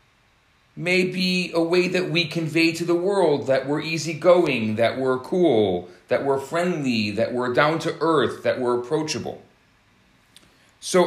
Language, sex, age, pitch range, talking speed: English, male, 40-59, 130-170 Hz, 140 wpm